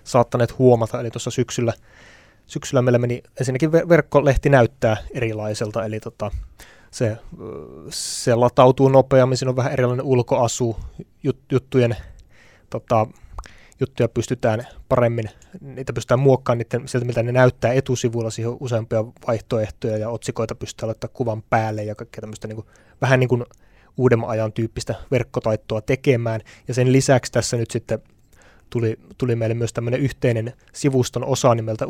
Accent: native